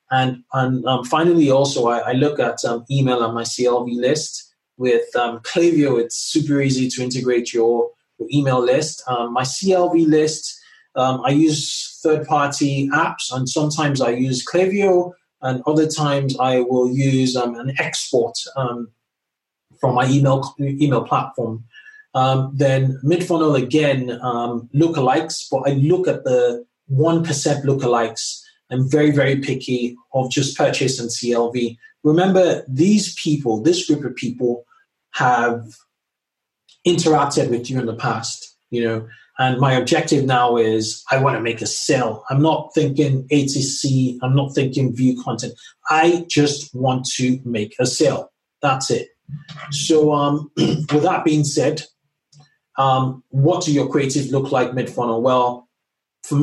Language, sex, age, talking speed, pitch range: English, male, 20-39, 150 wpm, 125-155 Hz